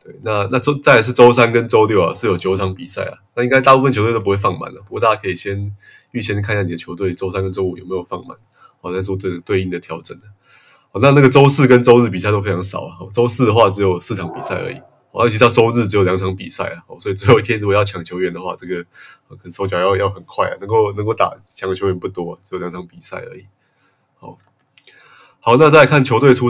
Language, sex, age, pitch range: Chinese, male, 20-39, 95-115 Hz